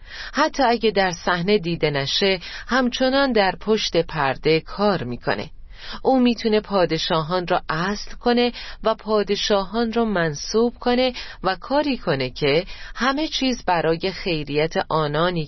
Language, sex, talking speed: Persian, female, 125 wpm